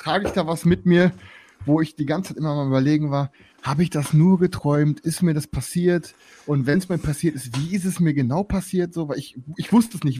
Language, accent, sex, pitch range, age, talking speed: German, German, male, 125-175 Hz, 30-49, 255 wpm